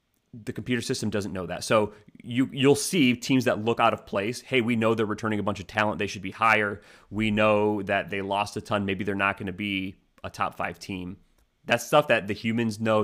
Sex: male